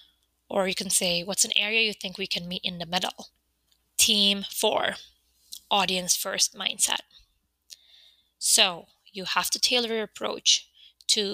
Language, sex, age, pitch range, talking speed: English, female, 20-39, 180-210 Hz, 150 wpm